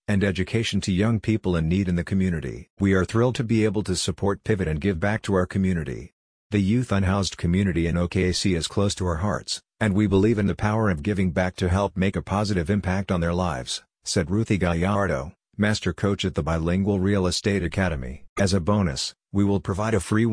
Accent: American